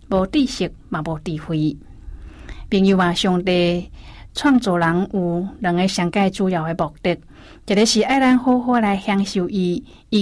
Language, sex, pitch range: Chinese, female, 175-210 Hz